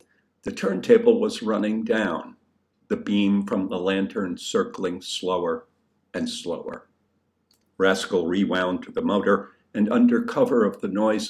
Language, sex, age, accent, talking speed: English, male, 60-79, American, 135 wpm